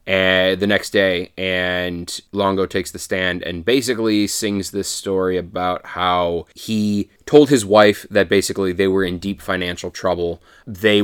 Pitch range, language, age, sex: 90-105 Hz, English, 20-39, male